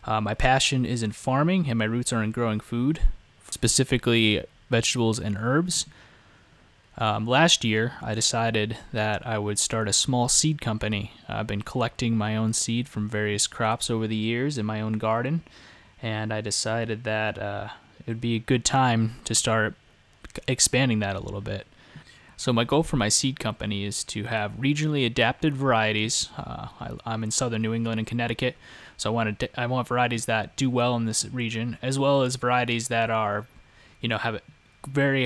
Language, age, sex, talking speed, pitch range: English, 20-39, male, 180 wpm, 110-125 Hz